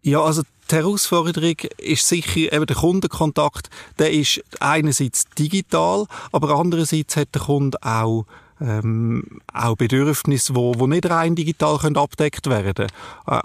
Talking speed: 125 wpm